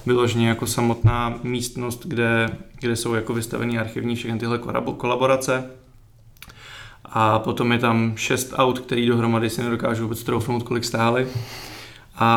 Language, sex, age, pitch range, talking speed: Czech, male, 20-39, 115-125 Hz, 135 wpm